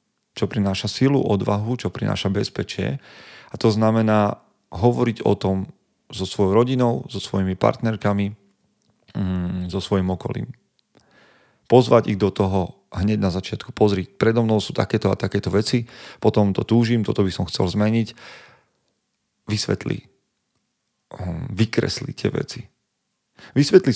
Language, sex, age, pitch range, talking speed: Slovak, male, 40-59, 95-110 Hz, 125 wpm